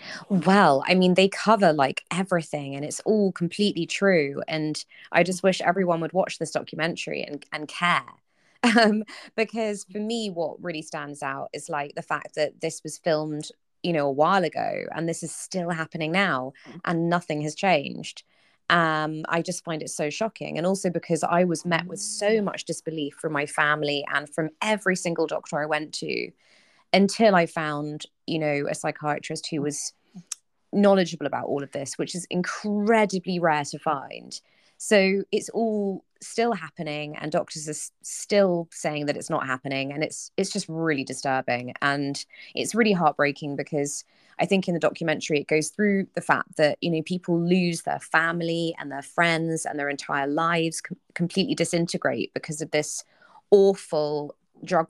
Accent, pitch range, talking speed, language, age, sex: British, 150-185 Hz, 175 wpm, English, 20-39, female